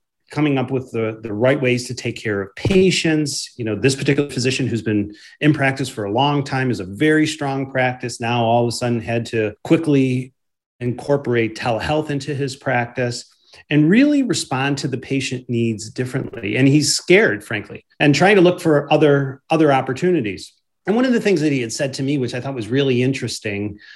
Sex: male